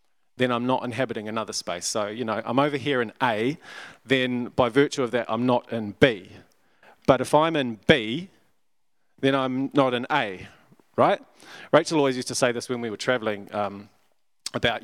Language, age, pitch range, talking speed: English, 30-49, 110-135 Hz, 180 wpm